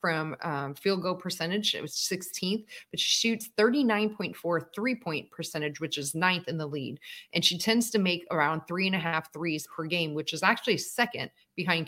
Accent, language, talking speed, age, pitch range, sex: American, English, 175 wpm, 30-49, 155-190 Hz, female